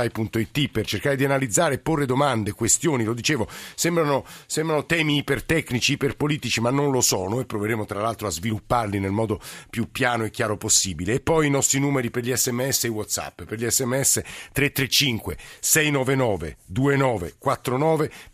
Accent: native